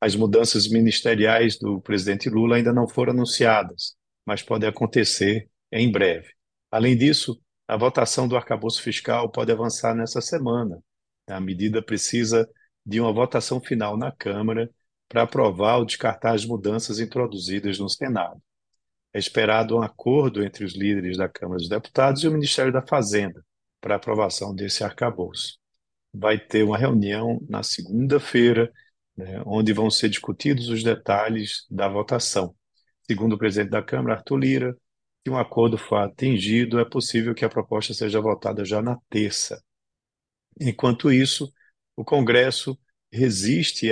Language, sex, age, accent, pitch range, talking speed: Portuguese, male, 50-69, Brazilian, 105-120 Hz, 145 wpm